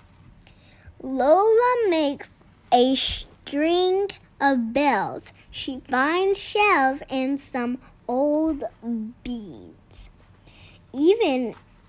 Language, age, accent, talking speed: English, 10-29, American, 70 wpm